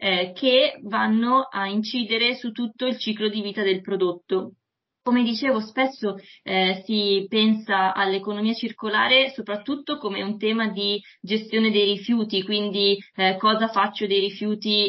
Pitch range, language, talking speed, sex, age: 195-230 Hz, Italian, 135 wpm, female, 20-39